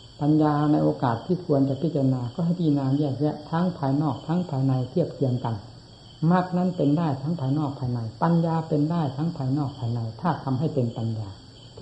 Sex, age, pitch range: female, 60-79, 130-150 Hz